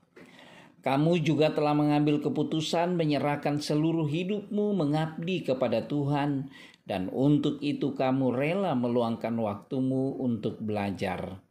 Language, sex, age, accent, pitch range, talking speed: Indonesian, male, 40-59, native, 115-160 Hz, 105 wpm